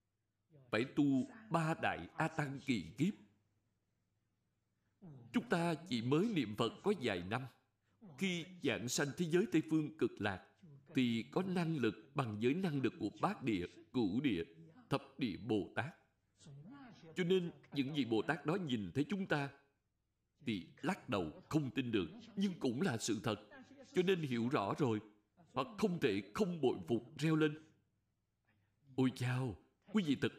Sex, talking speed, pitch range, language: male, 165 wpm, 115-190 Hz, Vietnamese